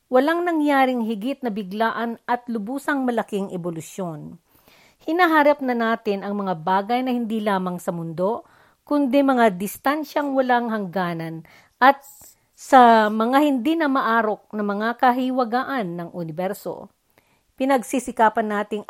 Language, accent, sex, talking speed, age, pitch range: Filipino, native, female, 120 wpm, 50-69, 195-265 Hz